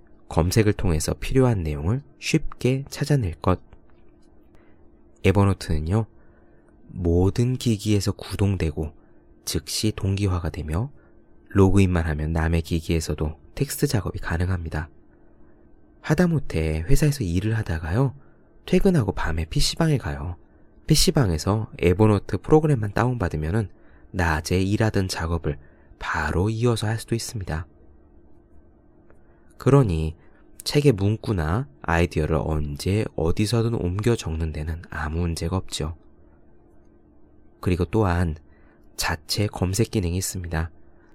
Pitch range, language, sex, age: 80-110 Hz, Korean, male, 20-39